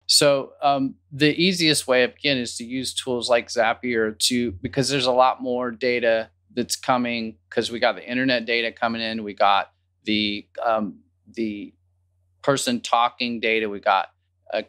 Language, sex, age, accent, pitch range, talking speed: English, male, 30-49, American, 105-130 Hz, 170 wpm